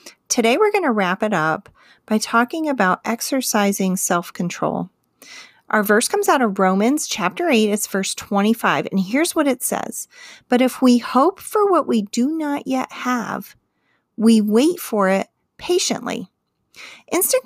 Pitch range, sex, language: 200-265 Hz, female, English